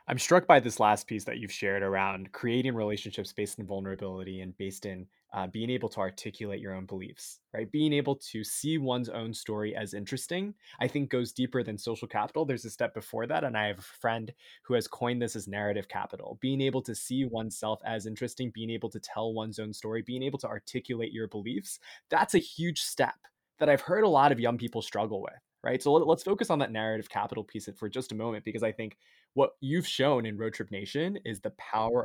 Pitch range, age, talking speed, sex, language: 105-125 Hz, 20-39, 225 wpm, male, English